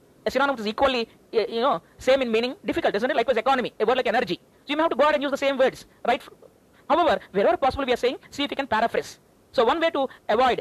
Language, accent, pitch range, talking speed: English, Indian, 215-275 Hz, 265 wpm